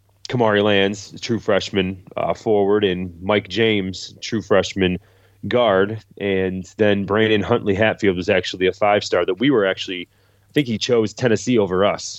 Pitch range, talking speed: 95-105 Hz, 165 wpm